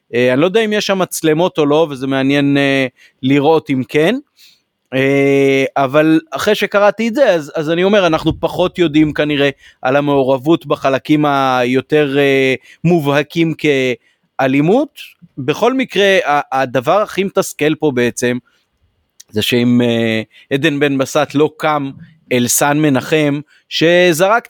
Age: 30-49